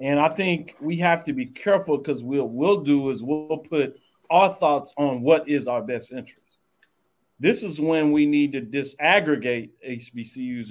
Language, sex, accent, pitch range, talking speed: English, male, American, 115-140 Hz, 175 wpm